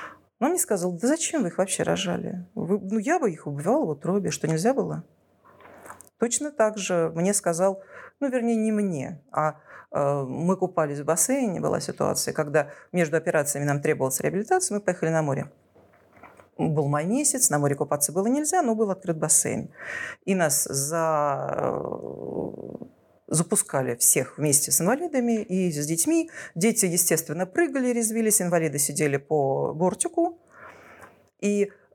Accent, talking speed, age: native, 145 wpm, 40-59